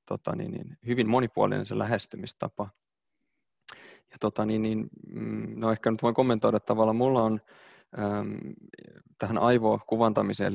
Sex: male